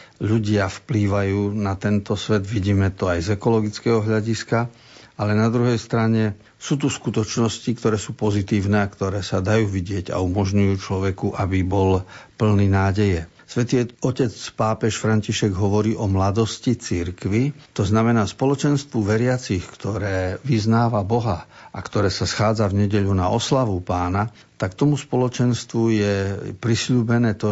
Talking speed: 135 wpm